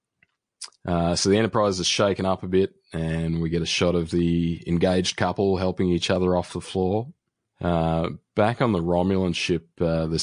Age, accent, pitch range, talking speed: 20-39, Australian, 80-90 Hz, 190 wpm